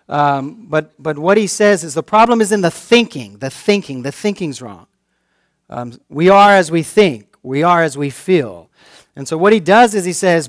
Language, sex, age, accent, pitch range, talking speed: English, male, 40-59, American, 145-210 Hz, 210 wpm